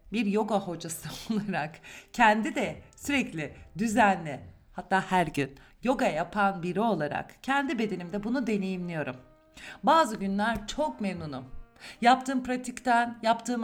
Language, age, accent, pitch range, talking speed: Turkish, 50-69, native, 180-250 Hz, 115 wpm